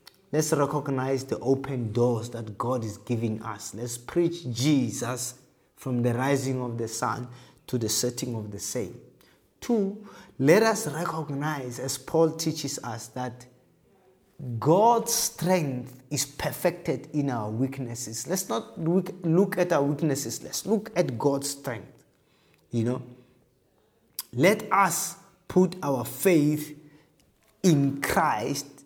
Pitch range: 120-155 Hz